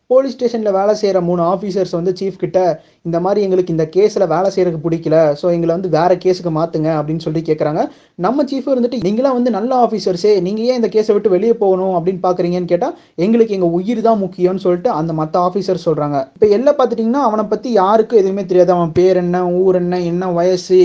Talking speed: 165 wpm